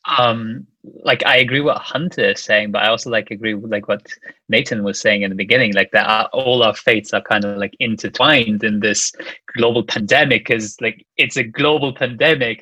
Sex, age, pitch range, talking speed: male, 20-39, 110-130 Hz, 205 wpm